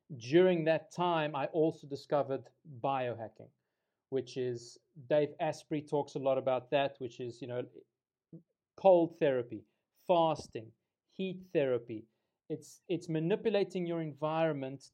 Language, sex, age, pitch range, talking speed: English, male, 30-49, 140-170 Hz, 120 wpm